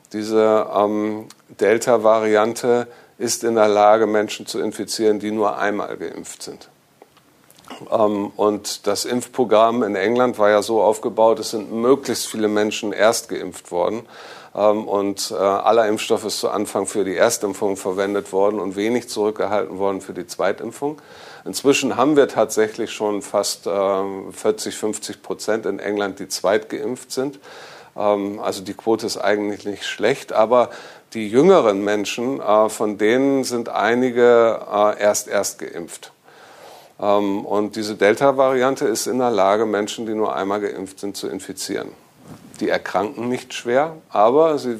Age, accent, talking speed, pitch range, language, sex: 50-69, German, 140 wpm, 100-115 Hz, German, male